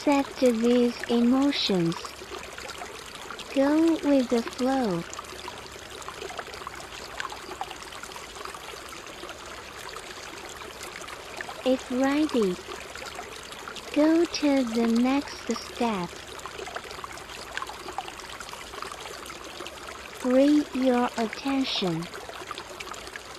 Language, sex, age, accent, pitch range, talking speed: English, female, 50-69, American, 230-290 Hz, 45 wpm